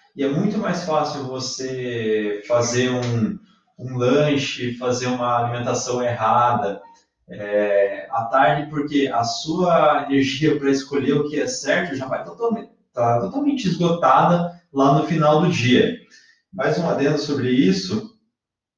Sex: male